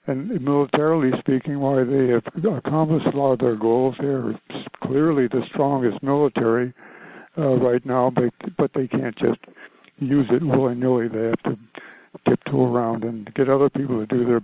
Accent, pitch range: American, 120-140 Hz